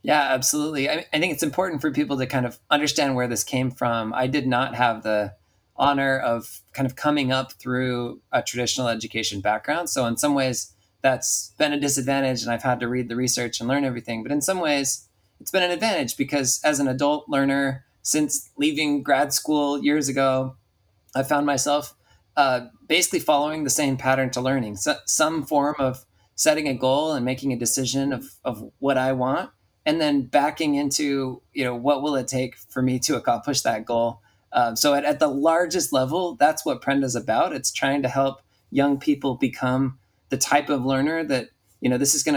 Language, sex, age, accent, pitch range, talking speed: English, male, 20-39, American, 125-145 Hz, 200 wpm